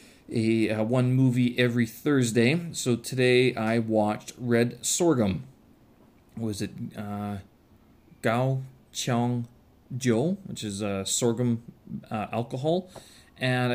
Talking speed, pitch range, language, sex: 115 wpm, 115-150 Hz, English, male